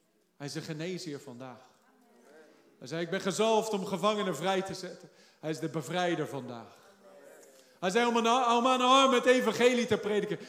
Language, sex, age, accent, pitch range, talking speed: Dutch, male, 40-59, Dutch, 185-235 Hz, 175 wpm